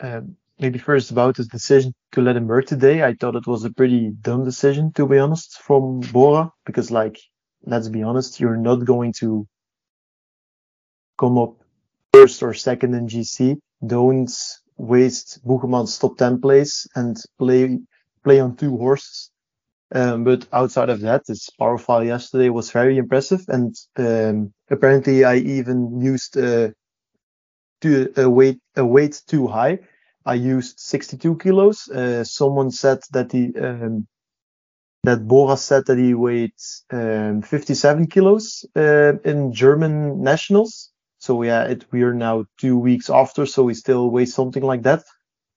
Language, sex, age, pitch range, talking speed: English, male, 20-39, 120-135 Hz, 155 wpm